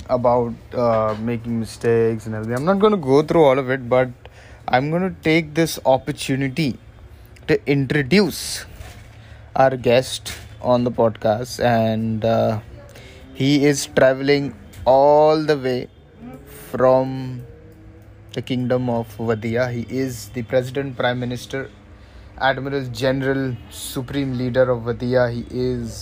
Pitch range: 95-135 Hz